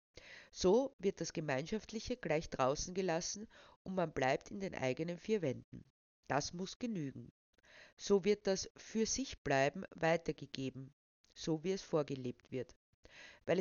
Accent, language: Austrian, German